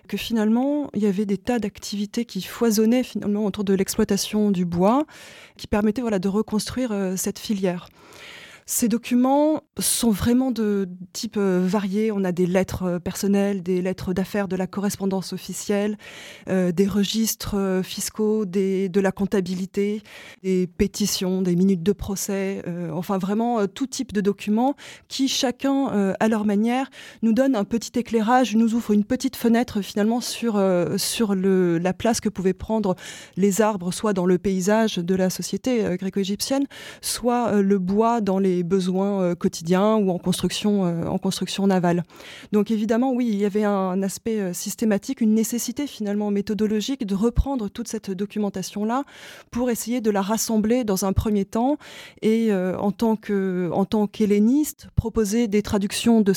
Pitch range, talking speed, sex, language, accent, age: 190-230 Hz, 170 wpm, female, French, French, 20-39